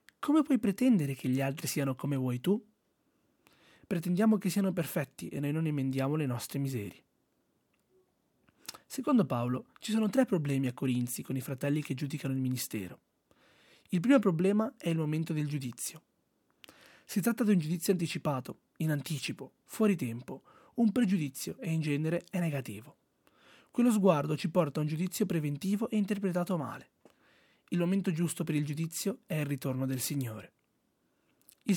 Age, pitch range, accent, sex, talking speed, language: 30-49, 140-195 Hz, native, male, 160 wpm, Italian